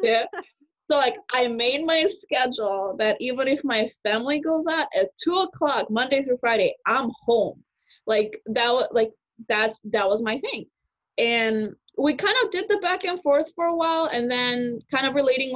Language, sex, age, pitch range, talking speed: English, female, 20-39, 215-290 Hz, 180 wpm